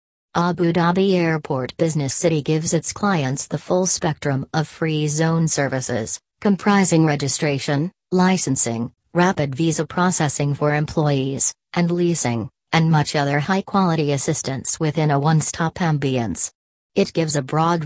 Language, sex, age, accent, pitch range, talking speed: English, female, 40-59, American, 140-175 Hz, 130 wpm